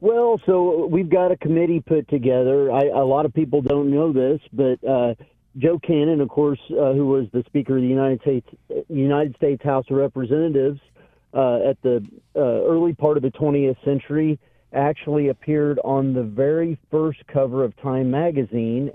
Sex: male